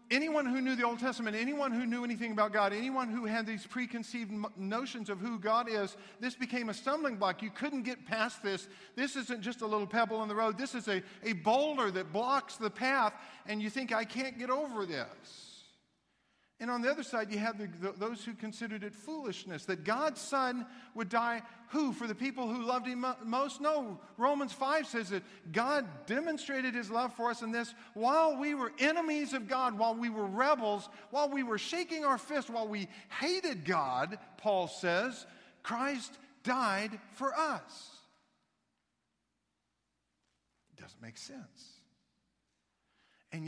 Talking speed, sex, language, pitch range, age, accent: 180 wpm, male, English, 165-245 Hz, 50-69, American